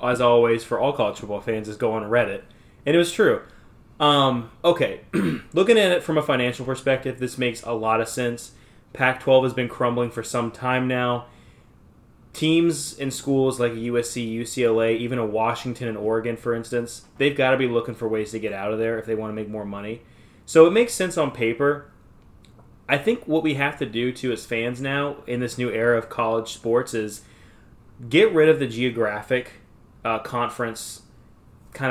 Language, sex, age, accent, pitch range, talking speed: English, male, 20-39, American, 115-135 Hz, 195 wpm